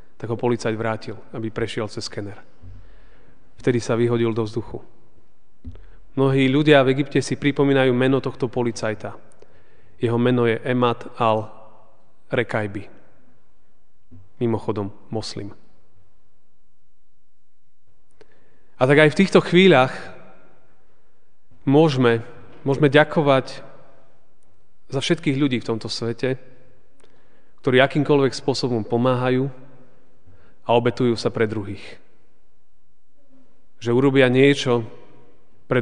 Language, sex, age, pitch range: Slovak, male, 30-49, 115-135 Hz